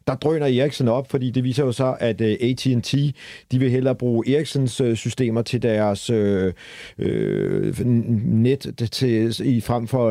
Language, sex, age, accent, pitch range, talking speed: Danish, male, 40-59, native, 105-125 Hz, 140 wpm